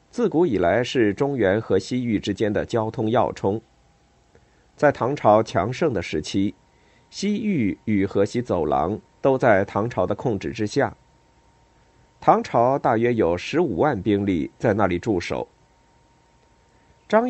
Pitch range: 100-135 Hz